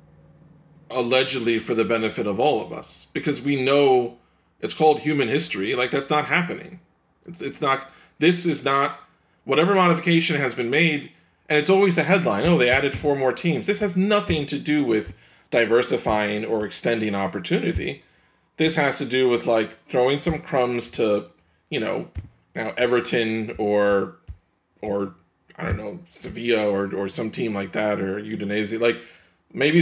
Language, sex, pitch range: English, male, 110-155 Hz